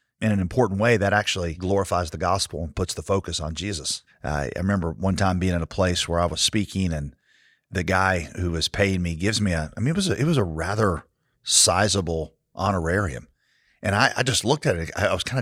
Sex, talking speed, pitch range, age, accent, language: male, 230 wpm, 85-115 Hz, 40-59, American, English